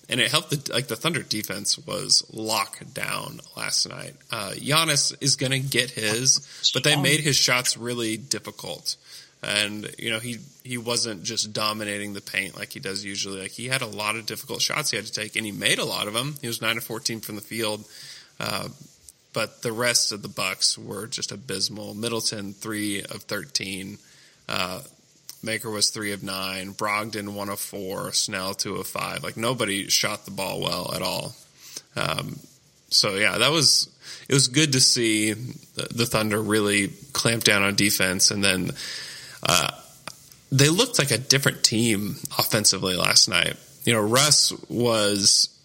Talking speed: 180 wpm